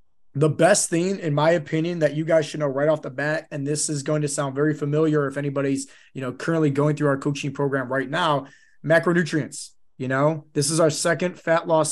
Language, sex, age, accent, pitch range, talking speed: English, male, 20-39, American, 140-165 Hz, 220 wpm